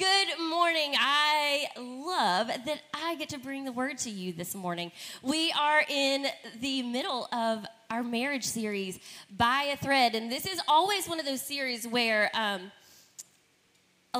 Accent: American